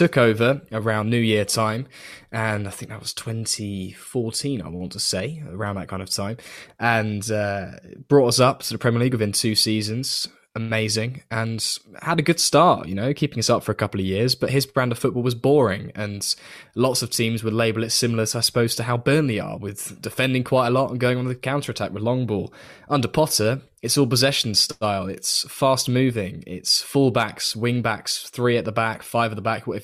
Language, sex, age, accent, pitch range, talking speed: English, male, 10-29, British, 105-125 Hz, 215 wpm